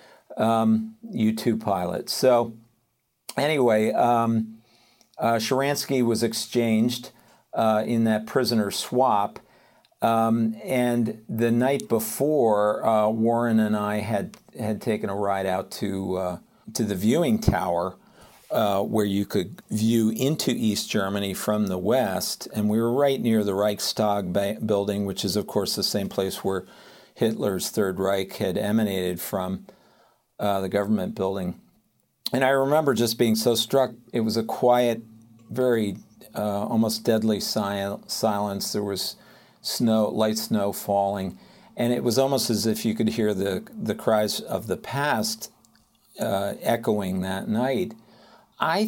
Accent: American